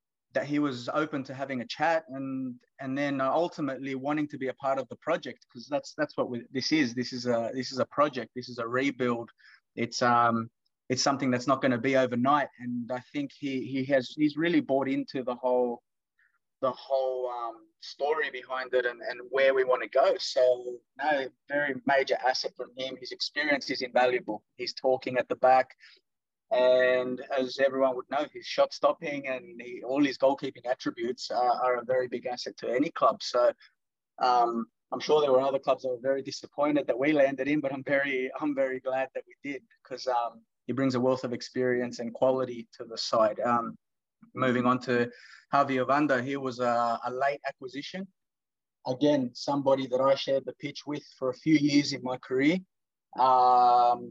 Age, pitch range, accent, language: 20-39, 125-140 Hz, Australian, English